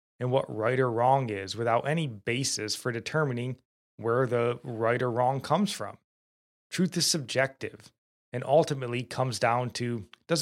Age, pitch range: 20-39, 115-145 Hz